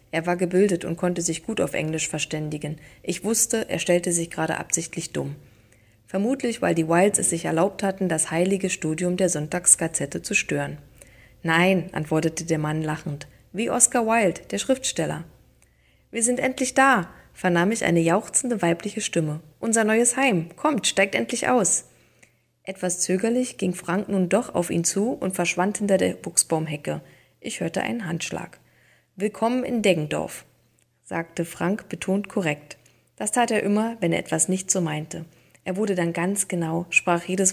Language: German